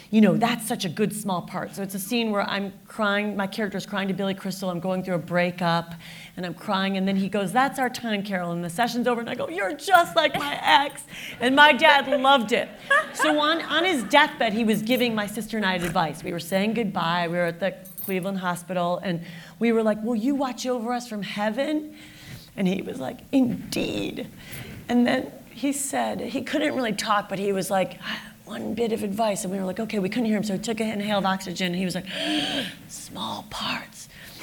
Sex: female